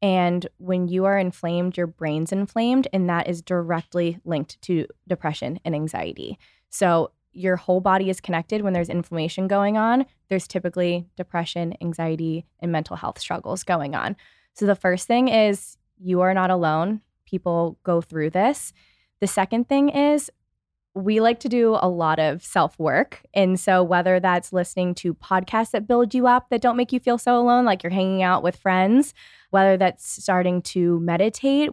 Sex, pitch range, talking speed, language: female, 170-200 Hz, 175 wpm, English